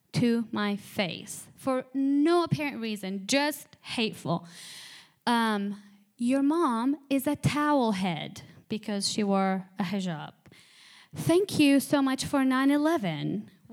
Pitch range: 210-270 Hz